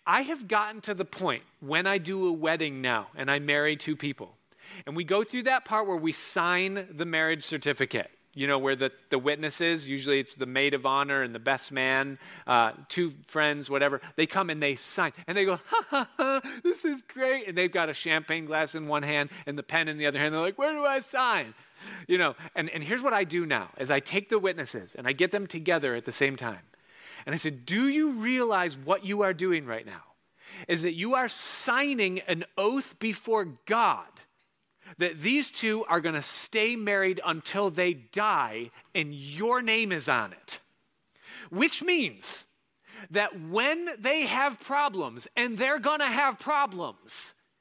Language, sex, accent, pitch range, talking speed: English, male, American, 155-250 Hz, 200 wpm